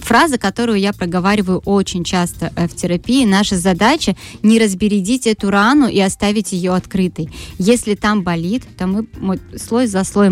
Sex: female